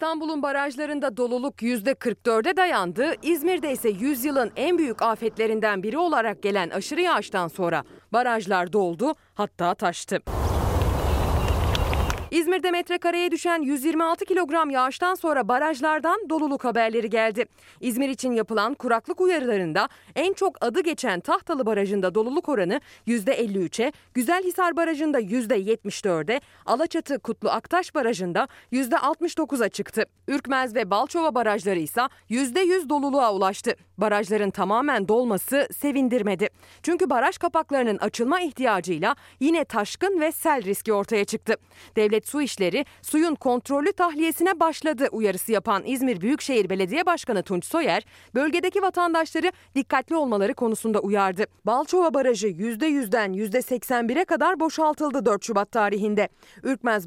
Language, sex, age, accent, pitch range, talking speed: Turkish, female, 30-49, native, 210-315 Hz, 120 wpm